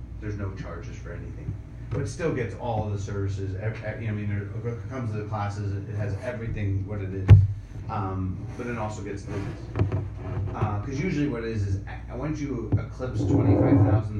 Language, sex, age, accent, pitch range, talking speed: English, male, 30-49, American, 100-115 Hz, 180 wpm